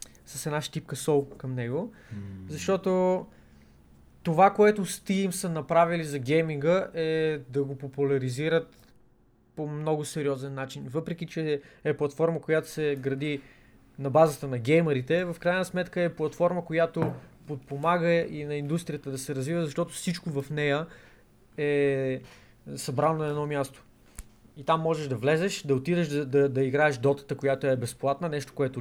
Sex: male